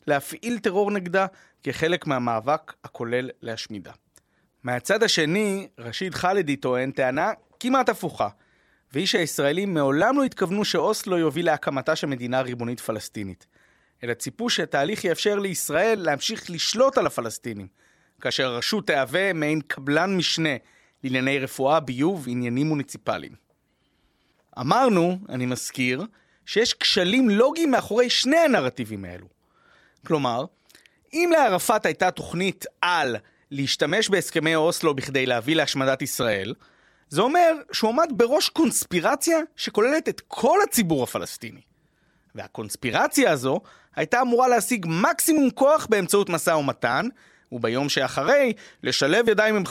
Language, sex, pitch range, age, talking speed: Hebrew, male, 135-225 Hz, 30-49, 115 wpm